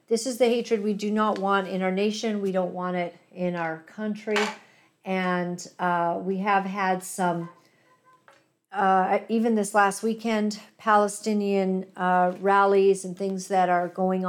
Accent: American